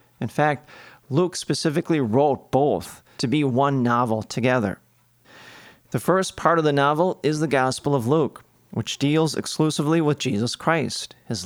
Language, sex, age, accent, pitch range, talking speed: English, male, 40-59, American, 120-155 Hz, 150 wpm